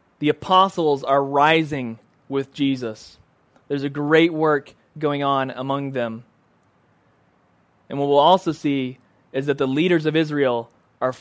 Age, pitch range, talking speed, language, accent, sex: 20-39, 135-165 Hz, 140 wpm, English, American, male